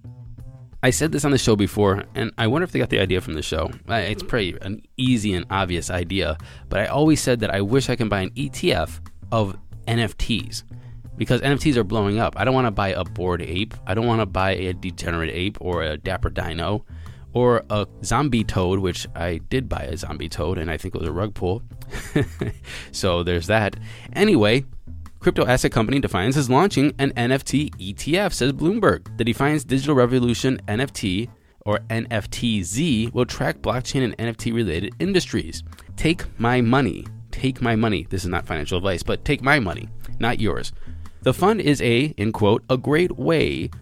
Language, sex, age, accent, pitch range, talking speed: English, male, 20-39, American, 95-125 Hz, 190 wpm